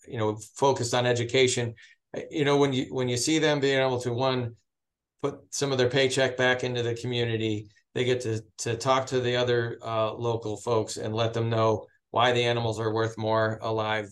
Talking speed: 205 wpm